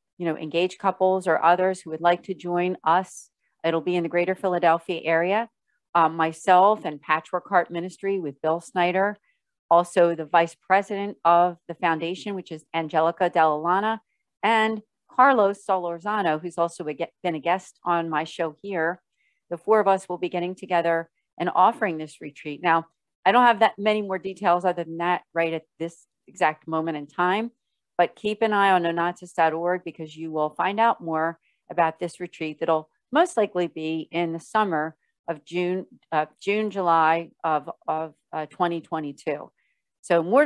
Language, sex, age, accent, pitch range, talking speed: English, female, 40-59, American, 160-190 Hz, 170 wpm